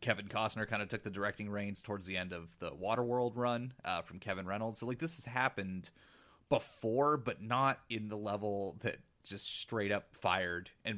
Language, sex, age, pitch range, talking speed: English, male, 30-49, 90-115 Hz, 195 wpm